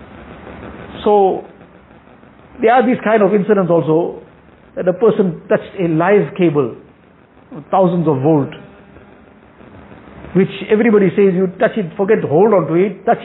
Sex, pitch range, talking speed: male, 180-230 Hz, 145 wpm